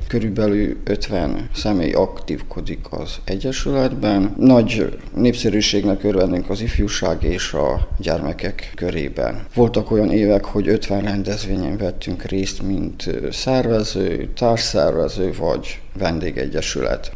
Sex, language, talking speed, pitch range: male, Hungarian, 100 wpm, 95-115 Hz